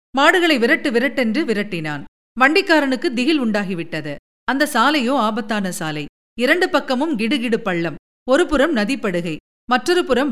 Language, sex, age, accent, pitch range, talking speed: Tamil, female, 50-69, native, 210-290 Hz, 115 wpm